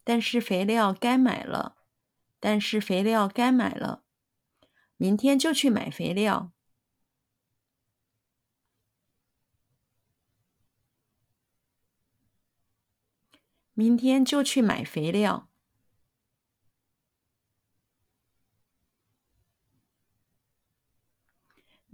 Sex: female